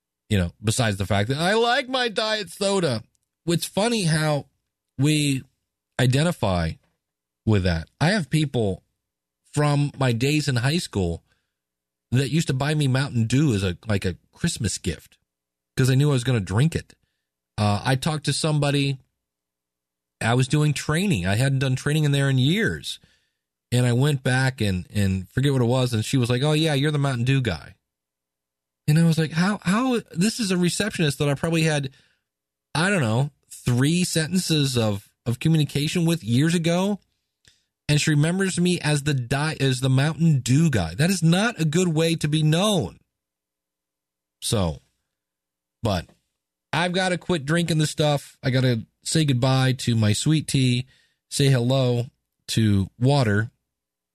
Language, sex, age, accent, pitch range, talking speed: English, male, 40-59, American, 95-155 Hz, 170 wpm